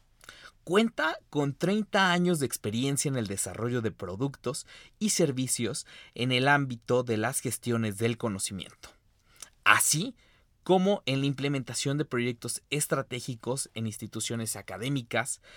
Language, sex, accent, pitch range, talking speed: Spanish, male, Mexican, 110-135 Hz, 125 wpm